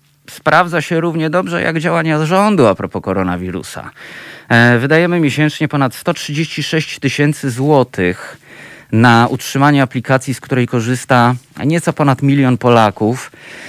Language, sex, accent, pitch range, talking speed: Polish, male, native, 110-145 Hz, 115 wpm